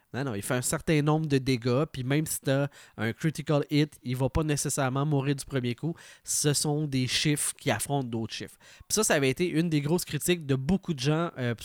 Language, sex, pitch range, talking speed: French, male, 130-165 Hz, 240 wpm